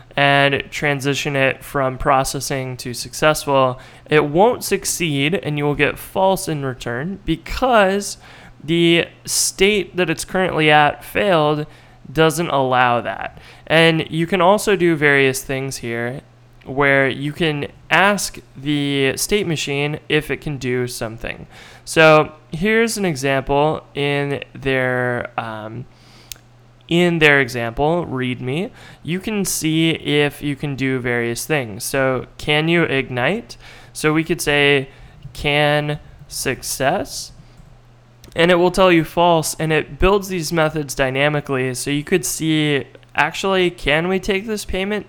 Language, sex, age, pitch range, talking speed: English, male, 20-39, 130-165 Hz, 130 wpm